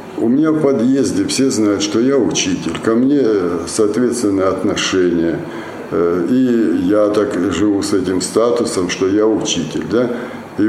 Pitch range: 95-125 Hz